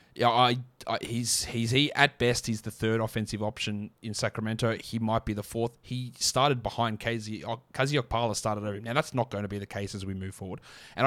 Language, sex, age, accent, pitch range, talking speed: English, male, 20-39, Australian, 105-125 Hz, 220 wpm